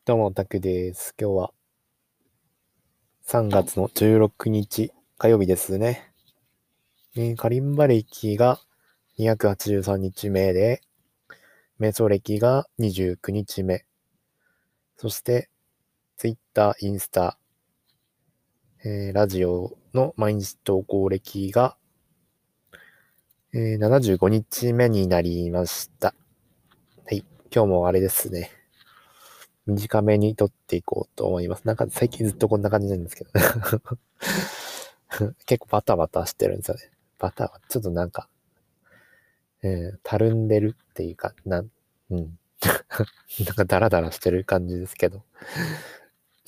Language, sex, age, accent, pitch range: Japanese, male, 20-39, native, 95-115 Hz